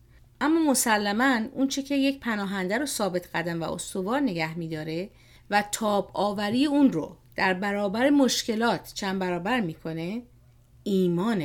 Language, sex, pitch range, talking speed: Persian, female, 175-230 Hz, 135 wpm